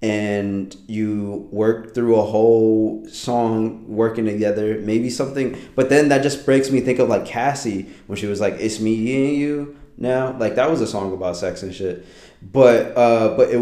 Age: 20-39